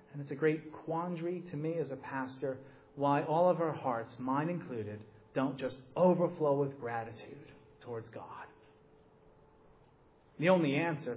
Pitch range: 130-170 Hz